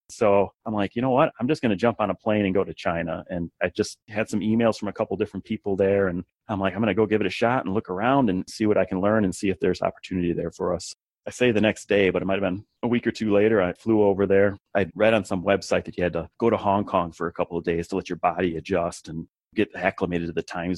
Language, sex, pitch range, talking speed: English, male, 90-110 Hz, 305 wpm